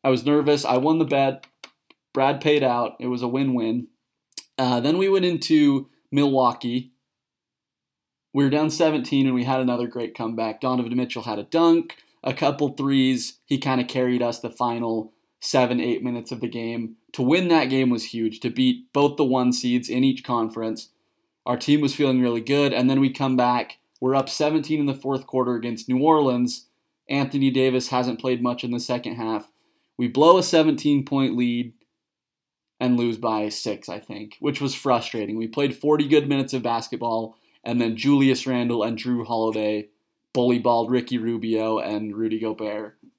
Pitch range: 115-140 Hz